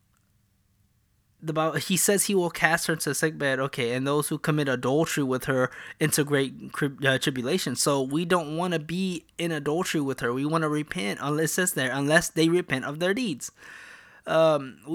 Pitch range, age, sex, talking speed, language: 130-165 Hz, 20-39, male, 195 wpm, English